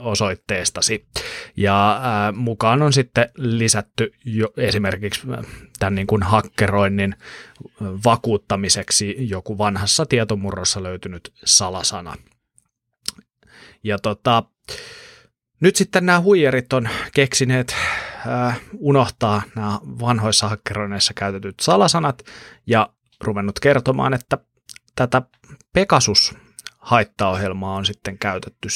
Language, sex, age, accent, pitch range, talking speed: Finnish, male, 30-49, native, 100-120 Hz, 90 wpm